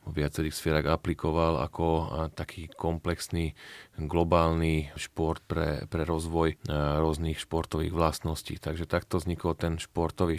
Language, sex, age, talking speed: Slovak, male, 30-49, 115 wpm